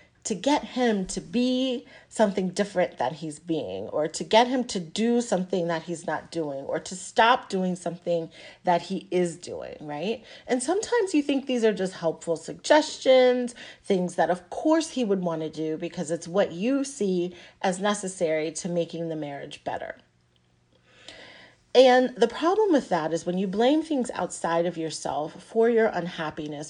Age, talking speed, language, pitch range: 40-59, 175 wpm, English, 165-235 Hz